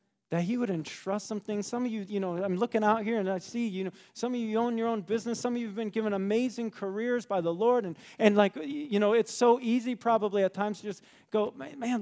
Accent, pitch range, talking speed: American, 155-215 Hz, 265 wpm